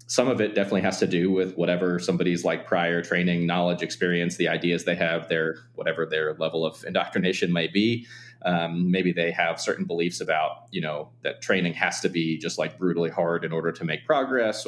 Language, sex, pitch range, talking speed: English, male, 85-95 Hz, 205 wpm